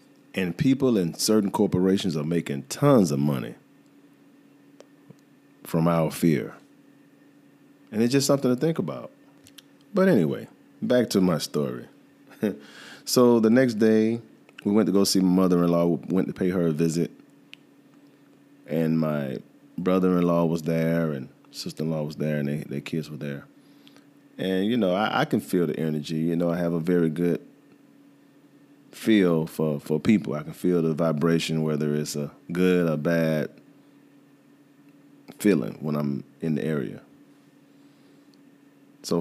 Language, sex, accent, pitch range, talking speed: English, male, American, 80-110 Hz, 150 wpm